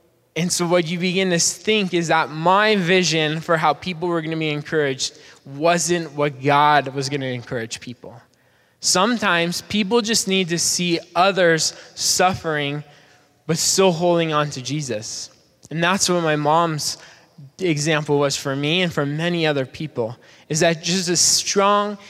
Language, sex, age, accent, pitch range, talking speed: English, male, 20-39, American, 145-180 Hz, 165 wpm